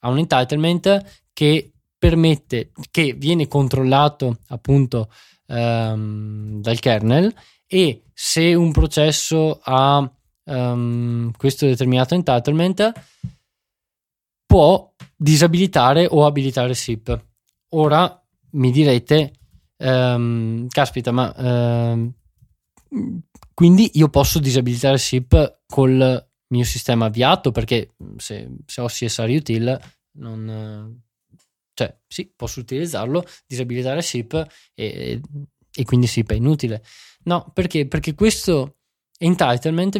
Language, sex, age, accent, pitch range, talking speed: Italian, male, 20-39, native, 120-155 Hz, 100 wpm